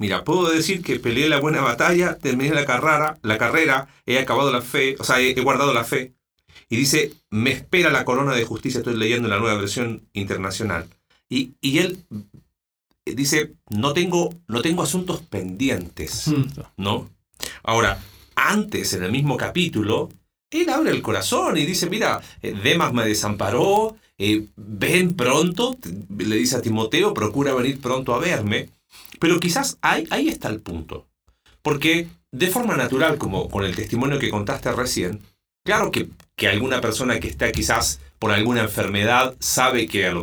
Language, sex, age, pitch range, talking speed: Spanish, male, 40-59, 105-150 Hz, 160 wpm